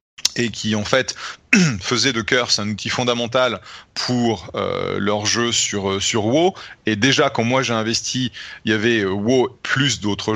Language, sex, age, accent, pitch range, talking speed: French, male, 30-49, French, 105-125 Hz, 175 wpm